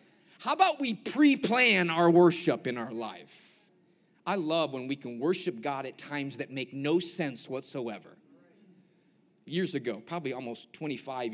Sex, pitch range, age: male, 135-175 Hz, 30-49